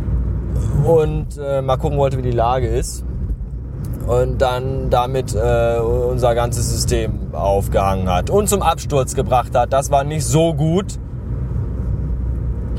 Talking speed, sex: 135 wpm, male